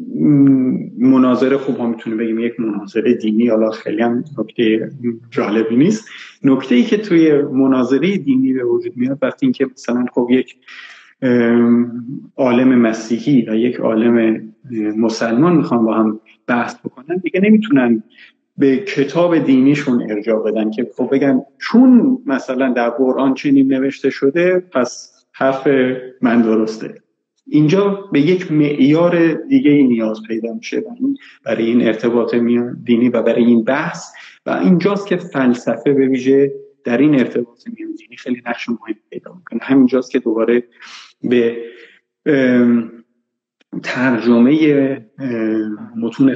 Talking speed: 125 wpm